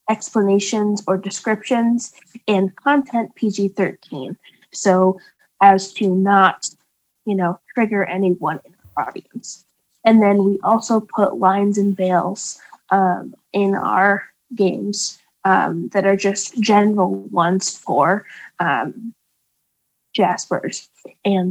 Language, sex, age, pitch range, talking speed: English, female, 10-29, 190-220 Hz, 110 wpm